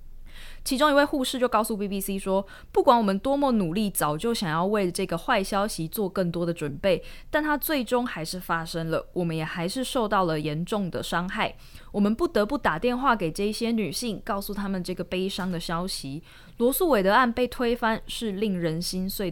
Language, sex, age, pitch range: Chinese, female, 20-39, 170-230 Hz